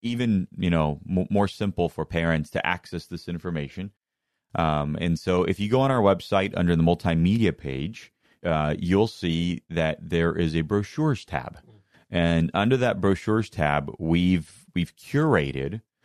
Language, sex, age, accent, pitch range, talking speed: English, male, 30-49, American, 85-105 Hz, 155 wpm